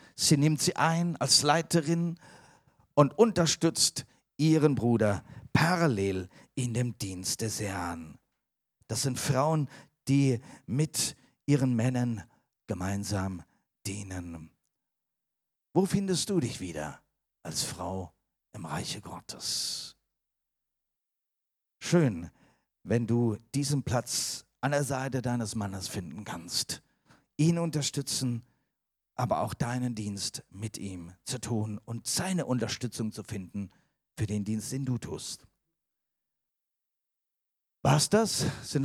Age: 50-69